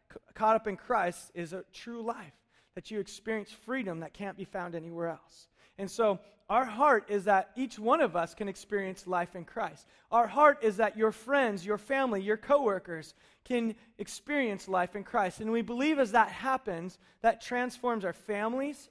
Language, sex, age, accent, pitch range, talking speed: English, male, 30-49, American, 200-250 Hz, 185 wpm